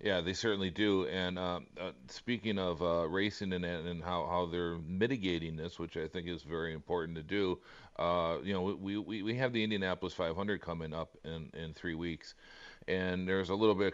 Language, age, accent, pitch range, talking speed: English, 40-59, American, 85-100 Hz, 205 wpm